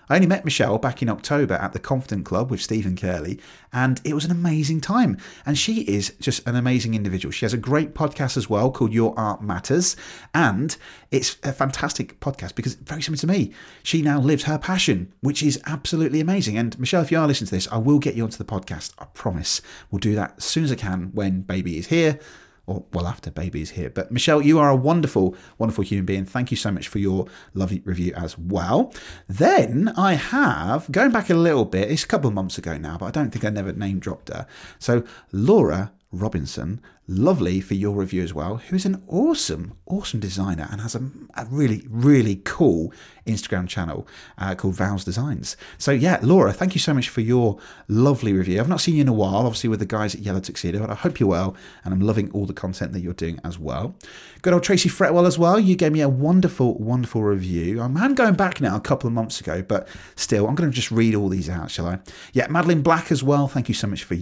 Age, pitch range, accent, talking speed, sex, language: 30-49, 95-150 Hz, British, 230 wpm, male, English